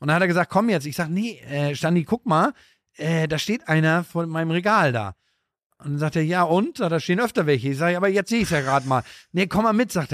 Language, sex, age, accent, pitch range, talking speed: German, male, 50-69, German, 140-185 Hz, 270 wpm